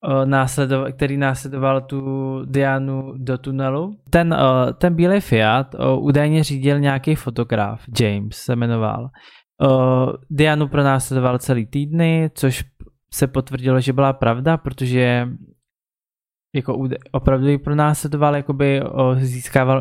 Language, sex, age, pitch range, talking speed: Czech, male, 20-39, 130-145 Hz, 105 wpm